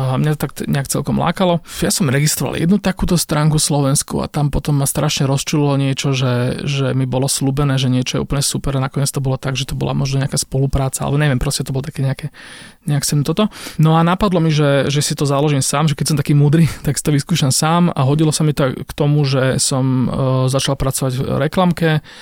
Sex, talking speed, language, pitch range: male, 240 wpm, Slovak, 135-155 Hz